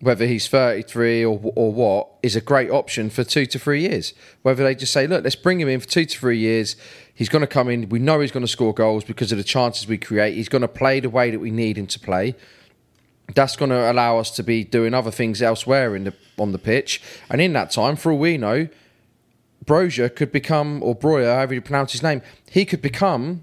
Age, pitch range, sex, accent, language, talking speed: 30-49, 110-140 Hz, male, British, English, 245 wpm